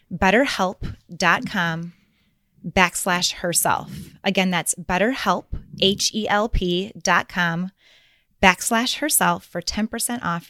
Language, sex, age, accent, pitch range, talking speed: English, female, 20-39, American, 180-215 Hz, 85 wpm